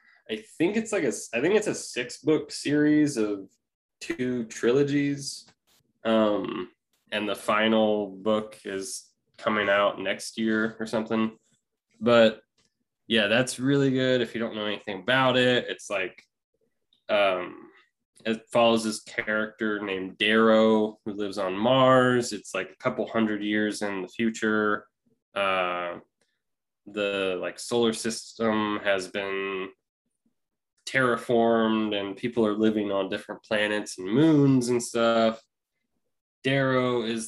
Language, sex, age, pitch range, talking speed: English, male, 20-39, 100-115 Hz, 130 wpm